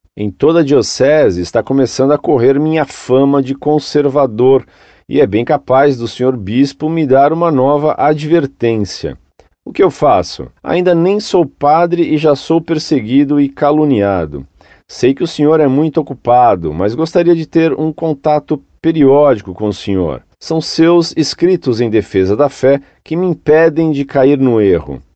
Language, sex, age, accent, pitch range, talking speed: Portuguese, male, 40-59, Brazilian, 125-155 Hz, 165 wpm